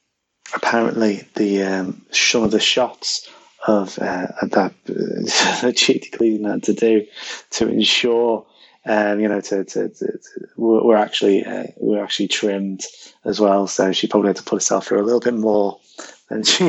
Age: 20-39